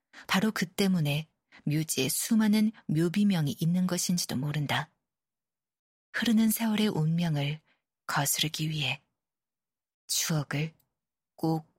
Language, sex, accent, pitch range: Korean, female, native, 150-195 Hz